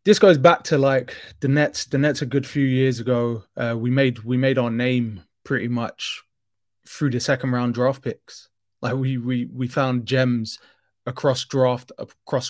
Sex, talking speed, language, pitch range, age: male, 180 wpm, English, 120-135 Hz, 20-39